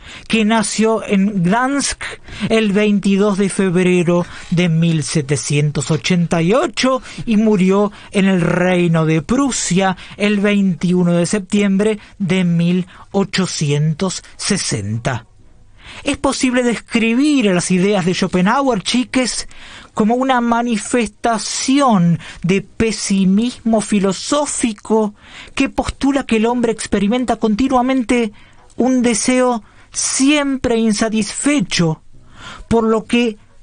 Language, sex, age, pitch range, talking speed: Spanish, male, 40-59, 185-250 Hz, 90 wpm